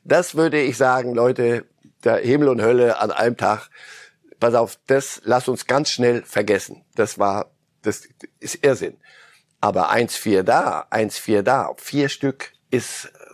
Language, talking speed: German, 160 wpm